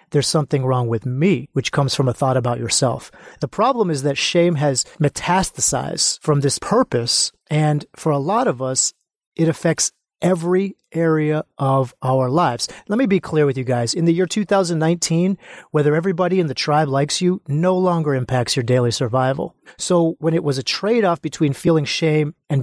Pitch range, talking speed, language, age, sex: 140-180 Hz, 185 wpm, English, 30-49, male